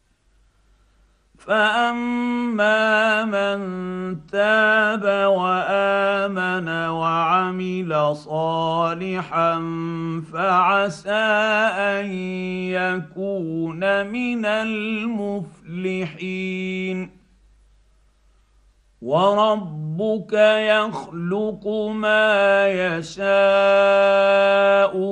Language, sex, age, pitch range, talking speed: Arabic, male, 50-69, 180-205 Hz, 35 wpm